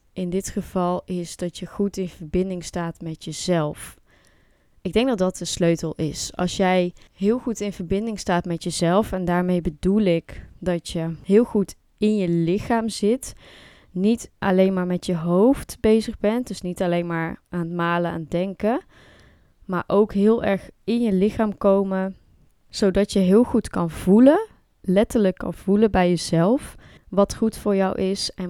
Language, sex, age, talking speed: Dutch, female, 20-39, 175 wpm